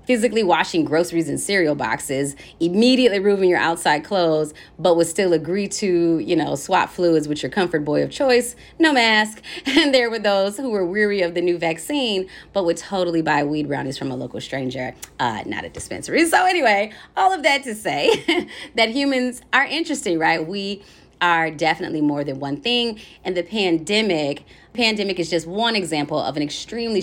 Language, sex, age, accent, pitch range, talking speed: English, female, 30-49, American, 155-210 Hz, 185 wpm